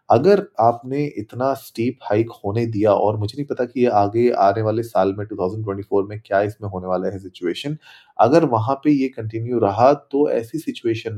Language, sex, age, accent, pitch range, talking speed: Hindi, male, 30-49, native, 105-130 Hz, 190 wpm